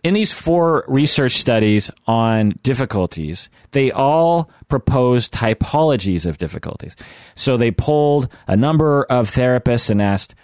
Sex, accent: male, American